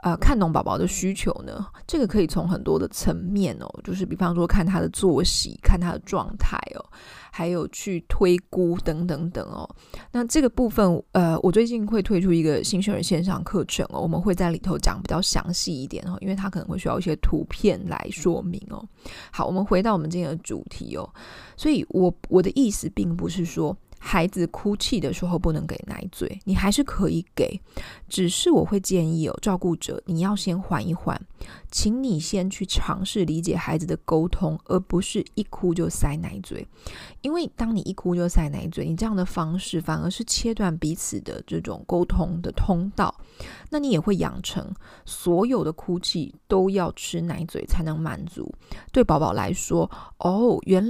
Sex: female